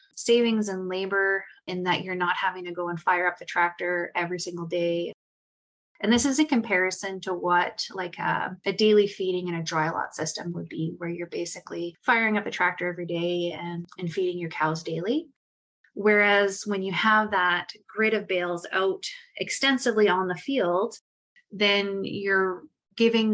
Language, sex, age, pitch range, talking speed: English, female, 20-39, 175-210 Hz, 175 wpm